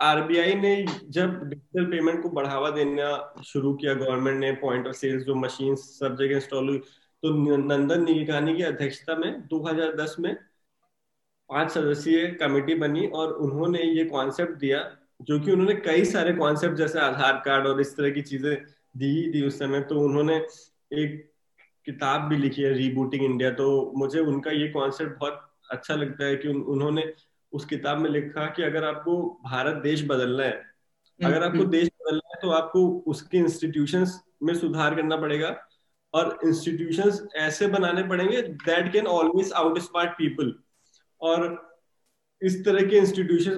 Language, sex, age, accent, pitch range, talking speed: Hindi, male, 20-39, native, 145-175 Hz, 100 wpm